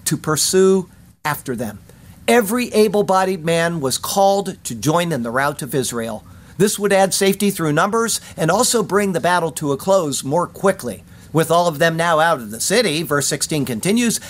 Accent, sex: American, male